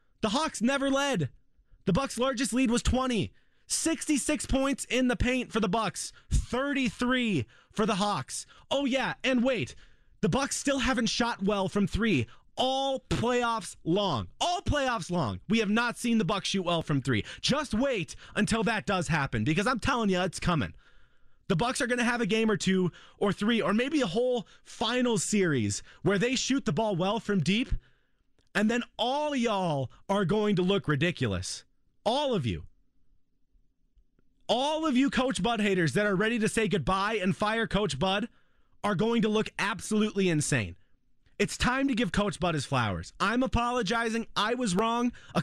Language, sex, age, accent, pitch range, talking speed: English, male, 30-49, American, 185-245 Hz, 180 wpm